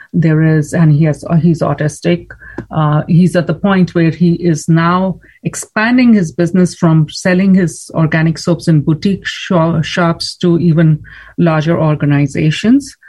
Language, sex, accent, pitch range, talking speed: English, female, Indian, 165-200 Hz, 150 wpm